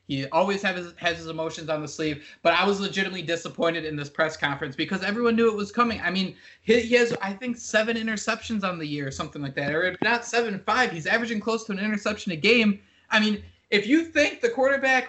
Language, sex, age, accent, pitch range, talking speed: English, male, 20-39, American, 175-235 Hz, 240 wpm